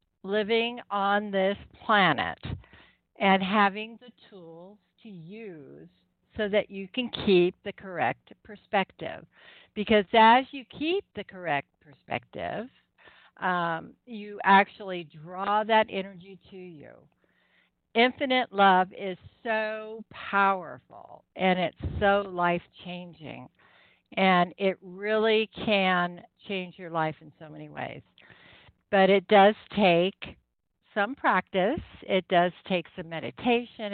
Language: English